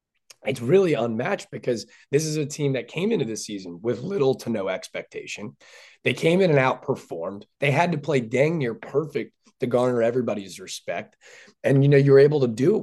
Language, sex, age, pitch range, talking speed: English, male, 20-39, 110-140 Hz, 200 wpm